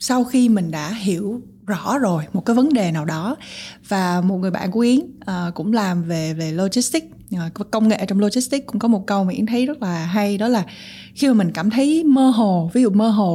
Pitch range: 175-230 Hz